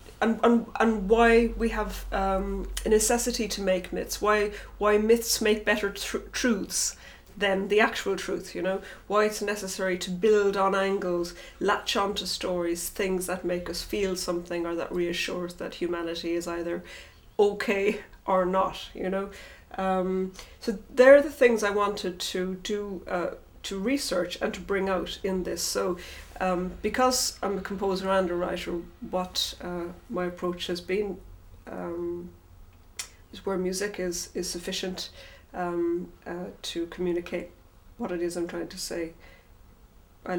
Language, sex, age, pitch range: English, female, 30-49, 175-205 Hz